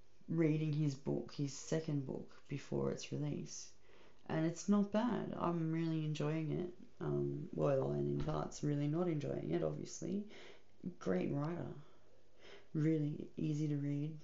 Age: 30-49